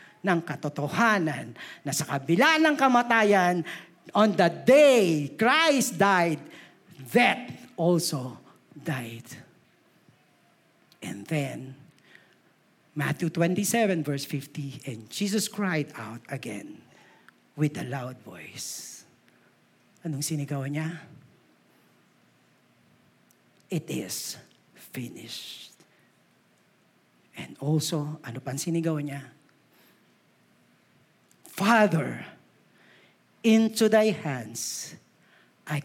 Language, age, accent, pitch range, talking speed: Filipino, 50-69, native, 140-190 Hz, 75 wpm